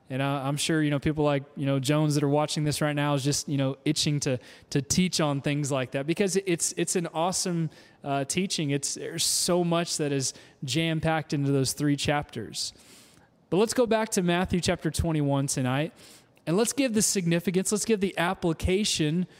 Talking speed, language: 200 wpm, English